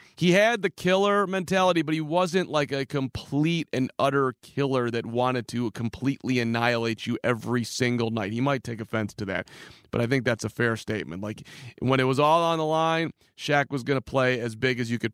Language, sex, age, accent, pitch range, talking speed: English, male, 30-49, American, 115-145 Hz, 215 wpm